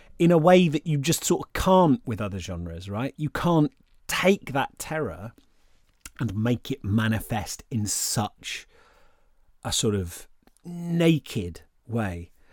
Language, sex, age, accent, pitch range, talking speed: English, male, 30-49, British, 110-155 Hz, 140 wpm